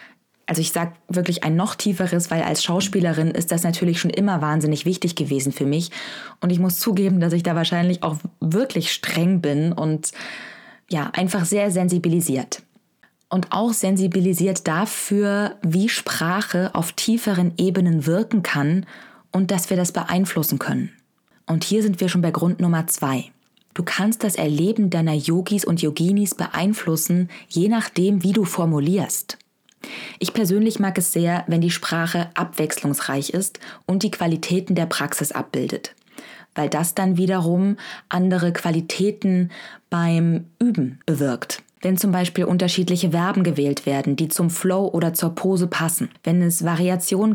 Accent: German